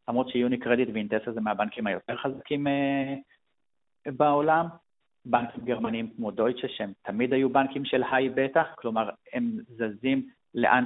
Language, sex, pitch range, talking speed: Hebrew, male, 115-150 Hz, 140 wpm